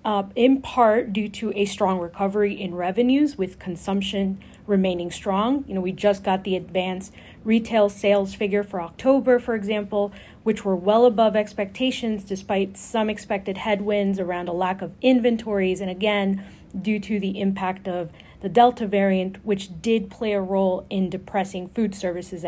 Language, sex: English, female